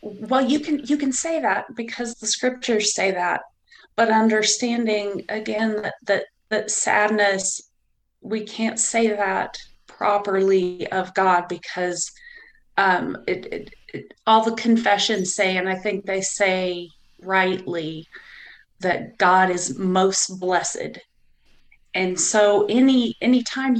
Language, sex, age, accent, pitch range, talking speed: English, female, 30-49, American, 185-225 Hz, 125 wpm